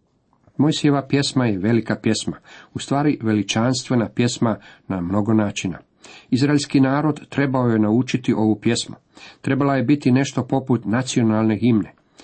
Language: Croatian